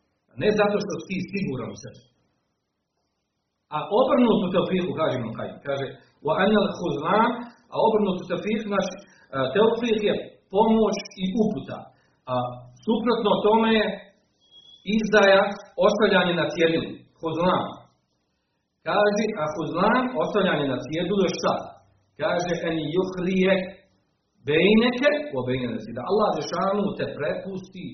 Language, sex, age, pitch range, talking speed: Croatian, male, 40-59, 130-205 Hz, 110 wpm